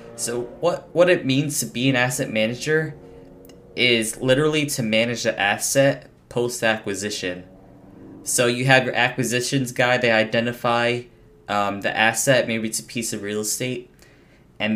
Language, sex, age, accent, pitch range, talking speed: English, male, 10-29, American, 110-130 Hz, 145 wpm